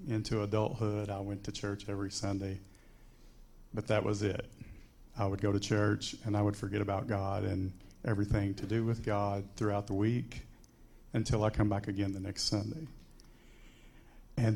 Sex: male